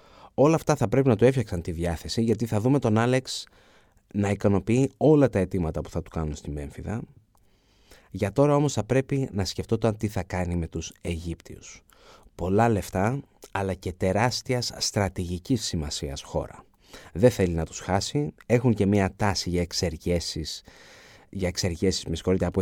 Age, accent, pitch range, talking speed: 30-49, native, 90-120 Hz, 160 wpm